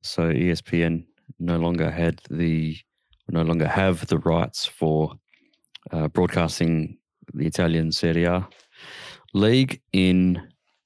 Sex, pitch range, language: male, 85-115 Hz, English